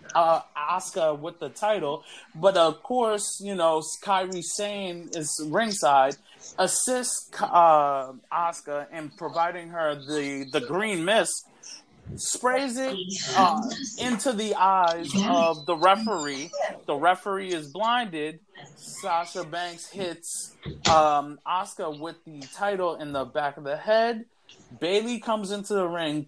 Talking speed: 130 wpm